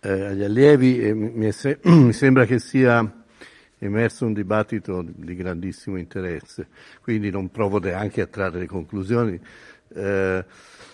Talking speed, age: 130 wpm, 60-79